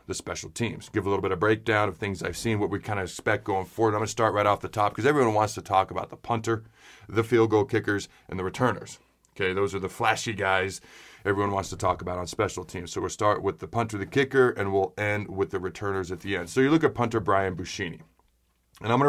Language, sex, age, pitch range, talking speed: English, male, 30-49, 95-120 Hz, 265 wpm